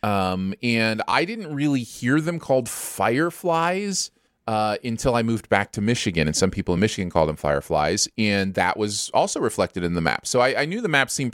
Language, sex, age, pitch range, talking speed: English, male, 30-49, 90-120 Hz, 205 wpm